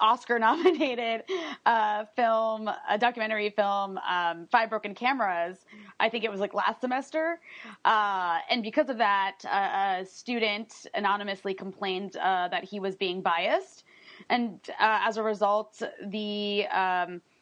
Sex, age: female, 20-39